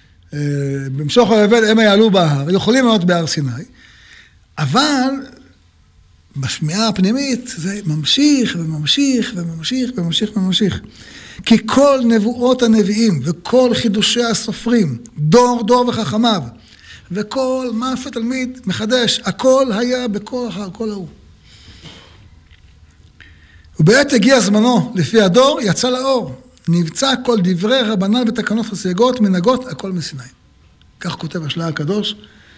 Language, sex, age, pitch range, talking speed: Hebrew, male, 60-79, 150-240 Hz, 110 wpm